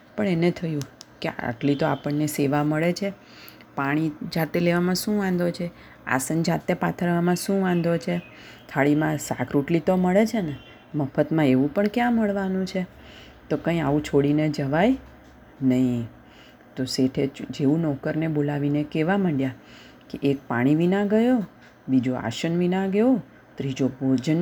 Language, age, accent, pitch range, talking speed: Gujarati, 30-49, native, 135-175 Hz, 125 wpm